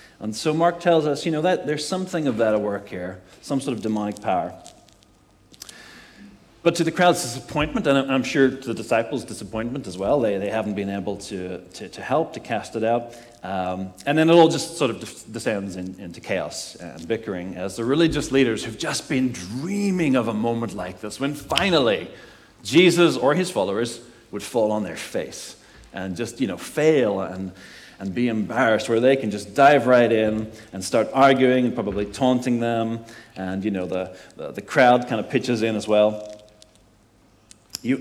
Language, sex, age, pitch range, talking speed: English, male, 40-59, 100-135 Hz, 195 wpm